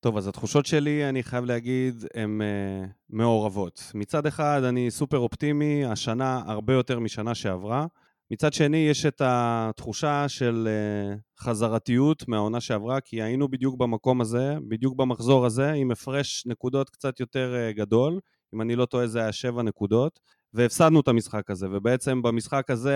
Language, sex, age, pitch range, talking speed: Hebrew, male, 20-39, 115-145 Hz, 155 wpm